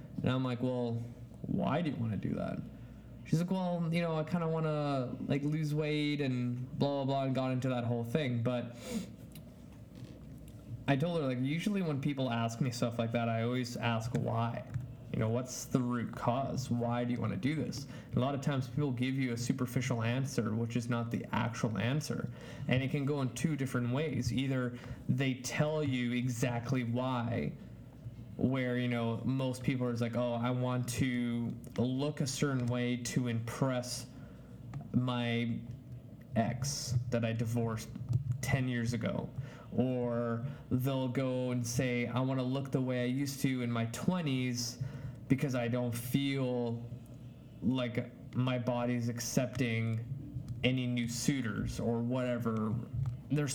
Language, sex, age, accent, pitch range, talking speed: English, male, 20-39, American, 120-135 Hz, 170 wpm